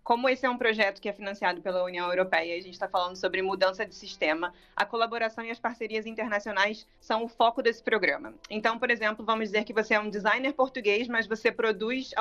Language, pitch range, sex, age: Portuguese, 190-230 Hz, female, 20-39